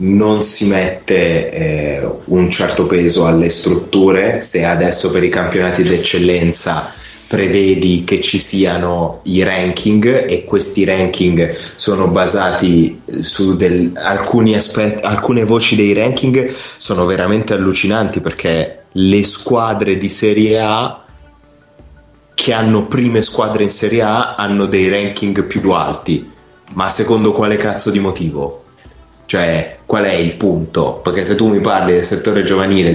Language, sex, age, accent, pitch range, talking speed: Italian, male, 20-39, native, 90-105 Hz, 135 wpm